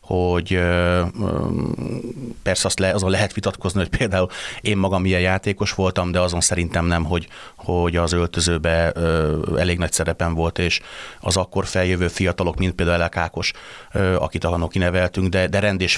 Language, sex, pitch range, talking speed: Hungarian, male, 85-100 Hz, 160 wpm